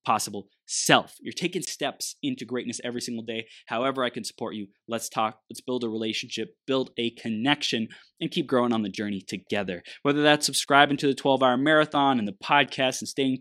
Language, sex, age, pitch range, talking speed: English, male, 20-39, 115-155 Hz, 190 wpm